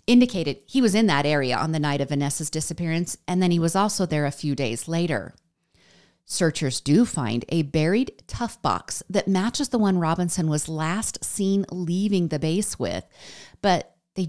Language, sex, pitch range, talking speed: English, female, 150-195 Hz, 180 wpm